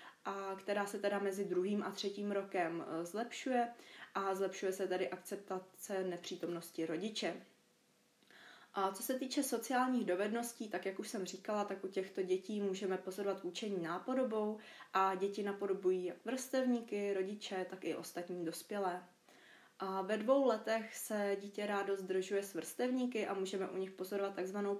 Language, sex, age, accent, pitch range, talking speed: Czech, female, 20-39, native, 185-215 Hz, 150 wpm